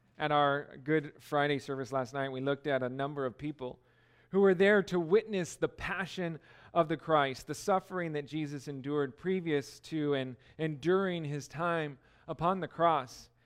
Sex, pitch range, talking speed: male, 145-195 Hz, 175 wpm